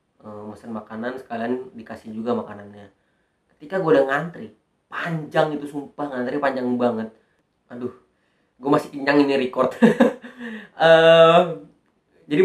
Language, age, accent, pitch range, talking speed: Indonesian, 30-49, native, 125-165 Hz, 115 wpm